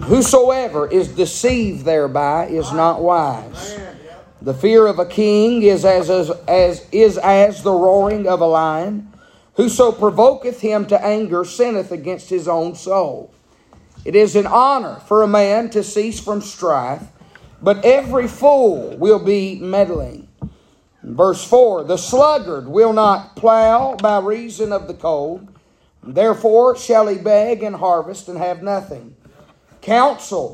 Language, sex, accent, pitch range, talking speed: English, male, American, 185-230 Hz, 140 wpm